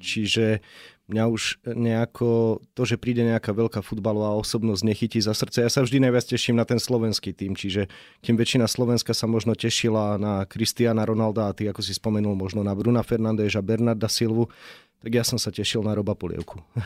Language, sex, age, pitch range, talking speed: Slovak, male, 30-49, 105-125 Hz, 185 wpm